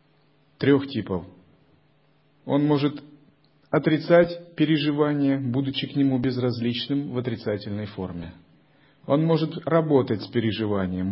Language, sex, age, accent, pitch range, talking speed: Russian, male, 40-59, native, 115-150 Hz, 95 wpm